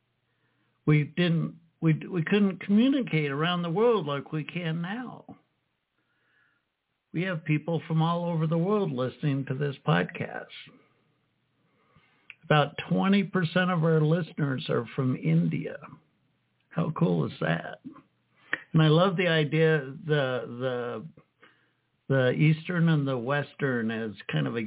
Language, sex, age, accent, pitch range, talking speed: English, male, 60-79, American, 130-165 Hz, 130 wpm